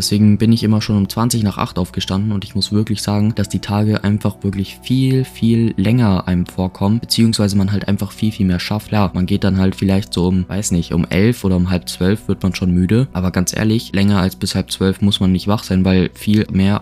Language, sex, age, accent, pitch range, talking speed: German, male, 20-39, German, 95-105 Hz, 245 wpm